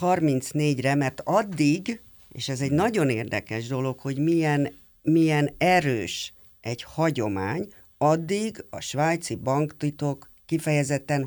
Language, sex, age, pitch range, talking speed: Hungarian, female, 50-69, 120-150 Hz, 110 wpm